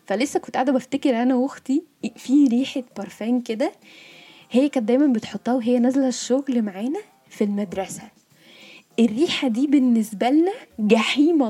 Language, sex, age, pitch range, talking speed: Arabic, female, 10-29, 215-270 Hz, 130 wpm